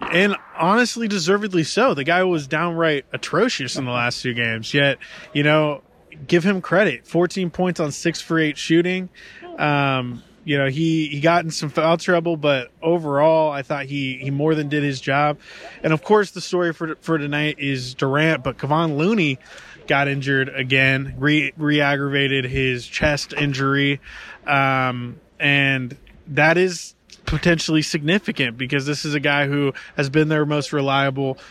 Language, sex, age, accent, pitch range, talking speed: English, male, 20-39, American, 140-165 Hz, 165 wpm